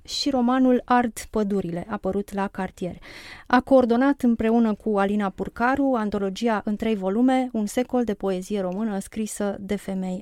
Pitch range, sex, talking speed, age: 200-250 Hz, female, 145 wpm, 30-49